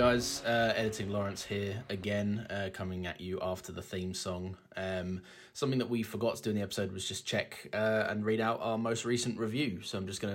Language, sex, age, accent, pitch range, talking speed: English, male, 20-39, British, 100-125 Hz, 225 wpm